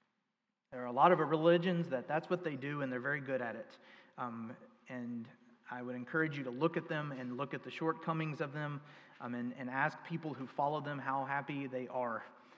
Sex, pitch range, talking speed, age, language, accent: male, 125-175 Hz, 220 wpm, 30-49, English, American